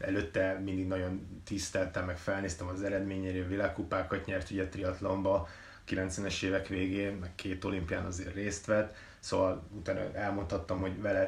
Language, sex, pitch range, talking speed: Hungarian, male, 95-105 Hz, 145 wpm